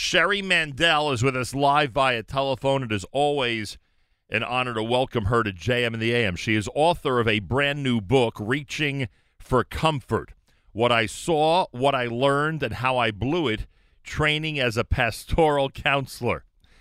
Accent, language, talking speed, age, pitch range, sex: American, English, 170 wpm, 40-59, 85-115 Hz, male